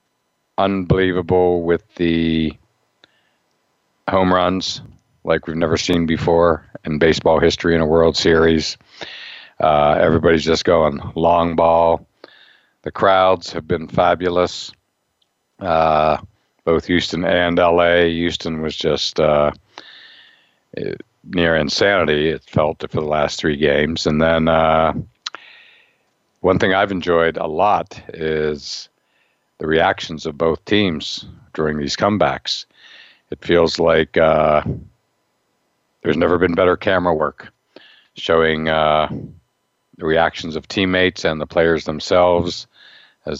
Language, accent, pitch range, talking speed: English, American, 80-90 Hz, 120 wpm